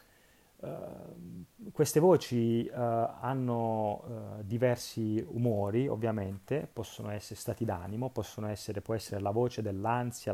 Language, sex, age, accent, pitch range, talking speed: Italian, male, 30-49, native, 100-120 Hz, 85 wpm